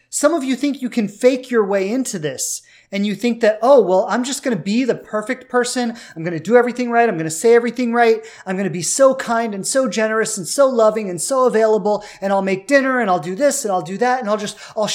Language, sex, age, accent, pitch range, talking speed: English, male, 30-49, American, 175-250 Hz, 275 wpm